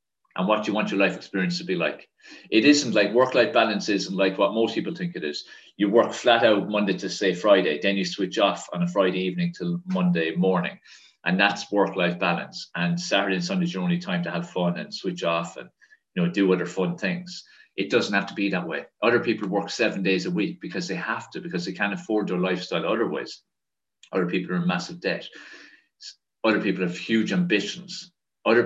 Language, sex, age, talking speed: English, male, 30-49, 220 wpm